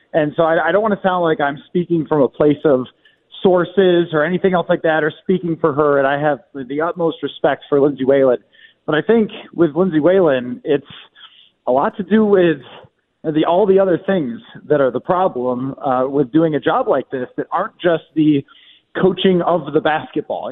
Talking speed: 210 wpm